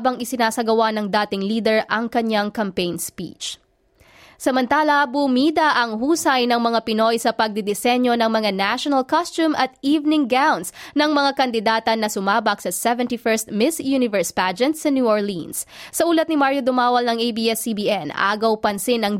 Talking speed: 150 wpm